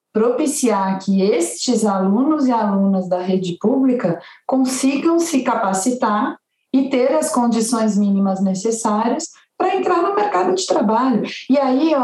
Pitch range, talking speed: 200-255 Hz, 130 wpm